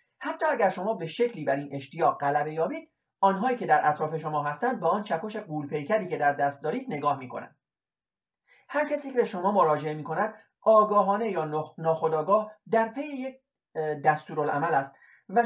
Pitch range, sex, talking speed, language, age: 150-235 Hz, male, 175 wpm, Persian, 30-49